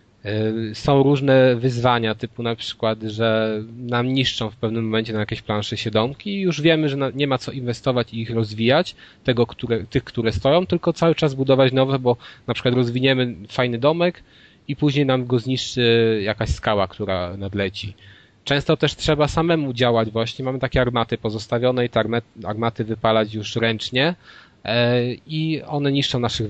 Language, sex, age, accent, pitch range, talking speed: Polish, male, 20-39, native, 115-135 Hz, 165 wpm